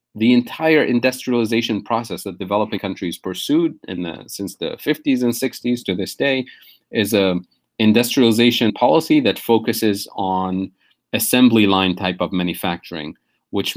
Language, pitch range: English, 95-120 Hz